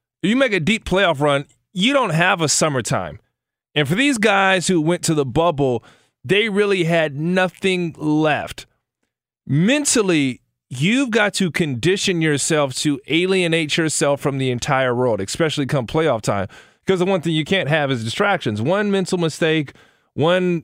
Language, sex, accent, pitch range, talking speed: English, male, American, 135-180 Hz, 160 wpm